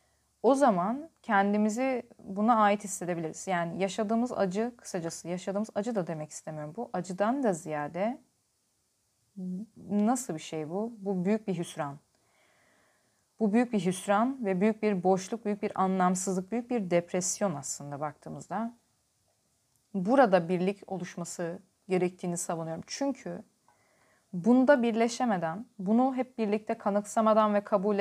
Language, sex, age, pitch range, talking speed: Turkish, female, 30-49, 175-215 Hz, 120 wpm